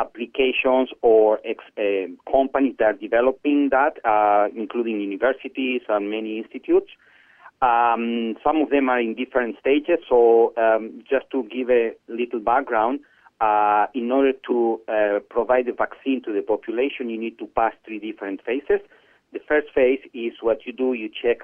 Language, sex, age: English, male, 40-59